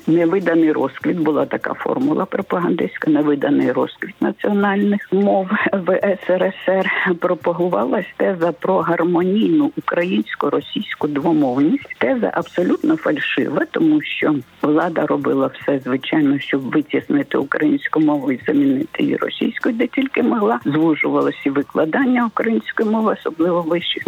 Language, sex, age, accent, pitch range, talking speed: Ukrainian, female, 50-69, native, 165-255 Hz, 110 wpm